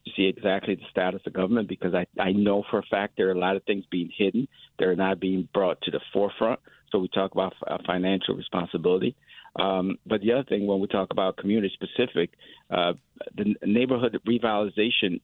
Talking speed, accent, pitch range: 200 wpm, American, 95-105 Hz